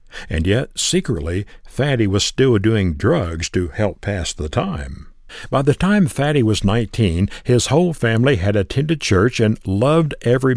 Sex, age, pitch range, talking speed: male, 60-79, 95-130 Hz, 160 wpm